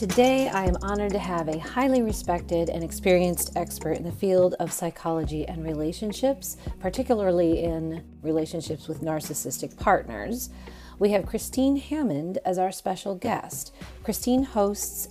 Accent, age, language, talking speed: American, 40-59, English, 140 wpm